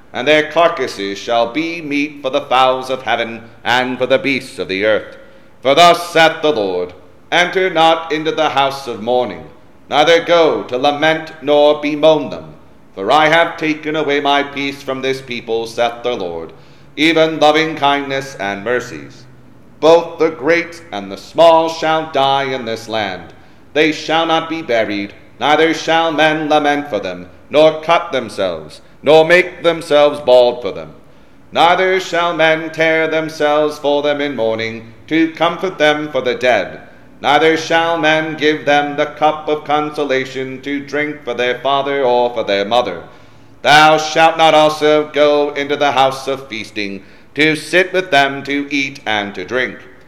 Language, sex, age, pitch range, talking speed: English, male, 40-59, 125-160 Hz, 165 wpm